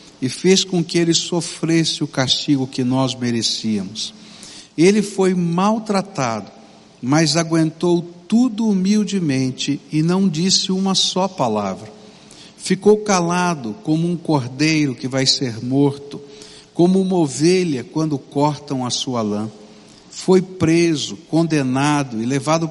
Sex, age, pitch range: male, 60-79, 140-190 Hz